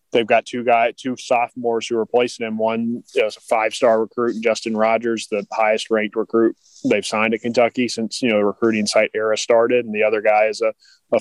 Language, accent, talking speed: English, American, 220 wpm